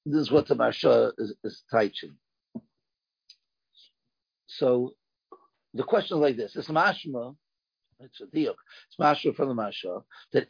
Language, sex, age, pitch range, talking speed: English, male, 50-69, 130-170 Hz, 145 wpm